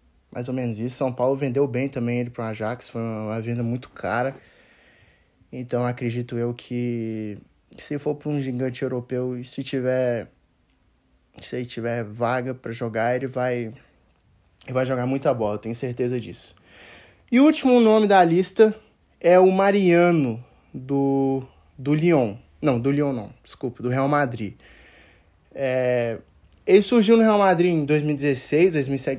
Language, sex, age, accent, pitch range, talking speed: Portuguese, male, 20-39, Brazilian, 120-160 Hz, 155 wpm